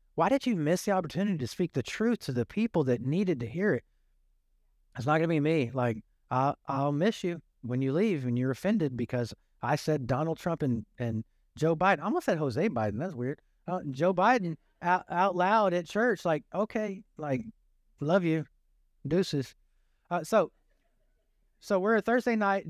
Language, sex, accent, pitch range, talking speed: English, male, American, 140-210 Hz, 190 wpm